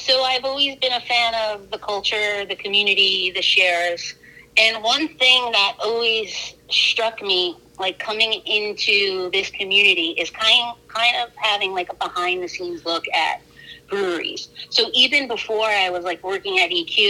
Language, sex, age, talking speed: English, female, 30-49, 165 wpm